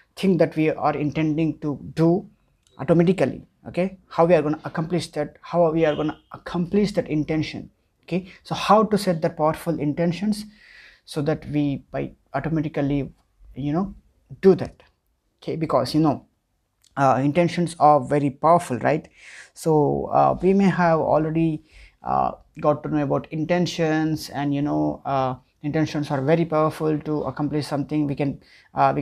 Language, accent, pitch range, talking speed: English, Indian, 145-170 Hz, 160 wpm